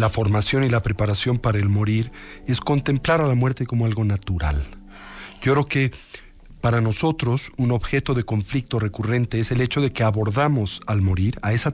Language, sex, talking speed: Spanish, male, 185 wpm